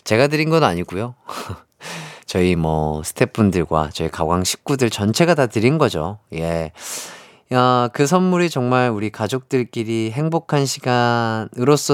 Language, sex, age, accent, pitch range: Korean, male, 30-49, native, 95-130 Hz